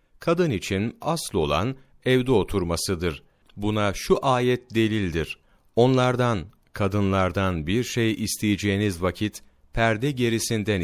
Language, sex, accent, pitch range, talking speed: Turkish, male, native, 90-115 Hz, 100 wpm